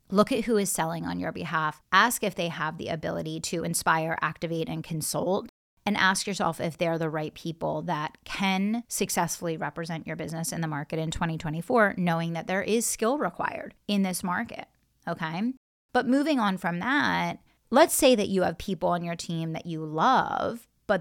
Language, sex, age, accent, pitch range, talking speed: English, female, 30-49, American, 160-205 Hz, 190 wpm